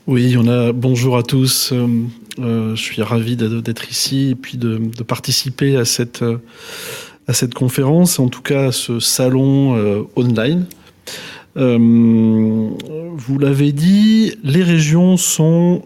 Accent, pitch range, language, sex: French, 115-145 Hz, French, male